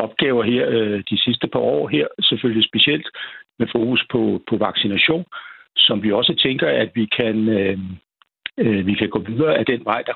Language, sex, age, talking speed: Danish, male, 60-79, 175 wpm